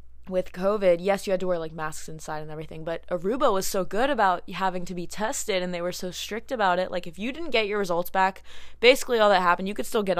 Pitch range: 160-200 Hz